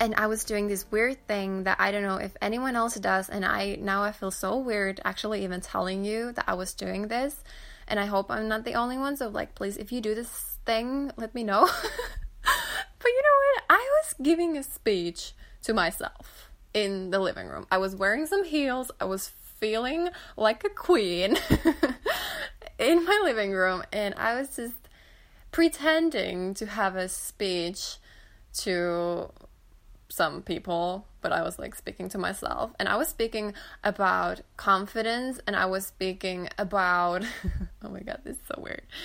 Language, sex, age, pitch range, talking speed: English, female, 20-39, 185-255 Hz, 180 wpm